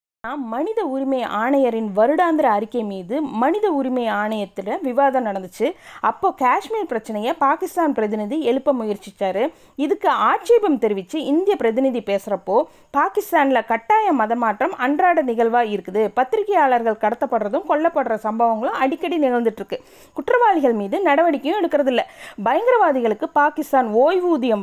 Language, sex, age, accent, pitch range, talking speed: Tamil, female, 20-39, native, 230-330 Hz, 110 wpm